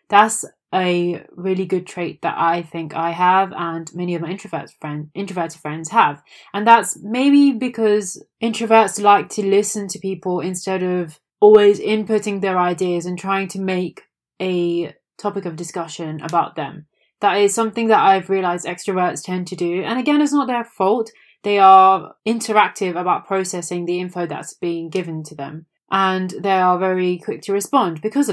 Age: 20-39